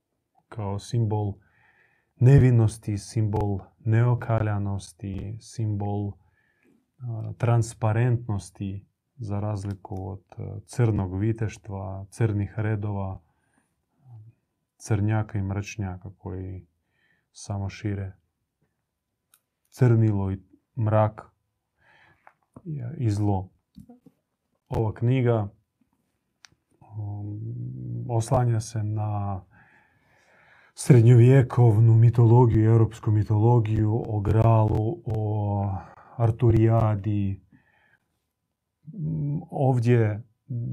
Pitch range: 100-120 Hz